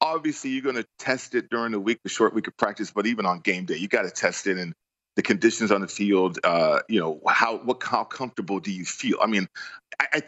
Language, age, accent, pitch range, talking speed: English, 40-59, American, 105-130 Hz, 240 wpm